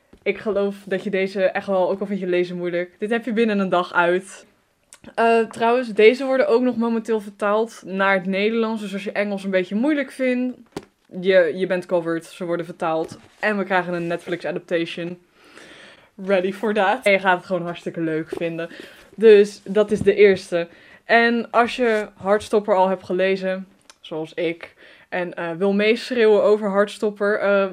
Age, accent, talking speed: 10-29, Dutch, 180 wpm